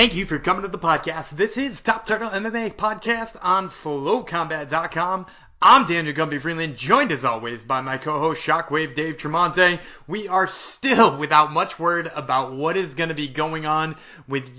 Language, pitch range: English, 155-205 Hz